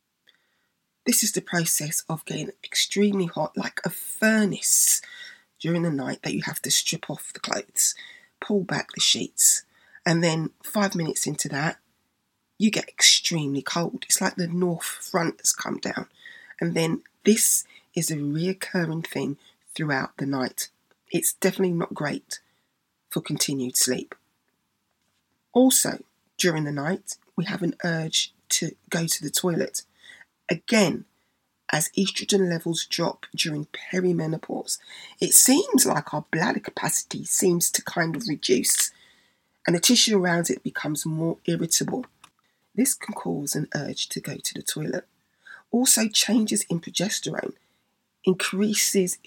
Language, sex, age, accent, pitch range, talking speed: English, female, 20-39, British, 155-205 Hz, 140 wpm